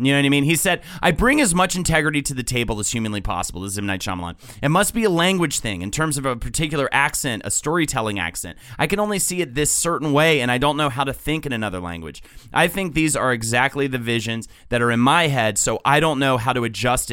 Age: 30-49